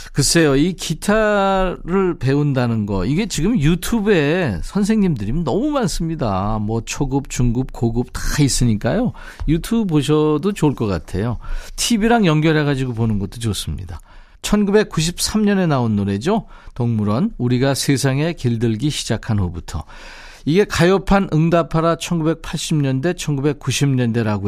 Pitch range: 110-170 Hz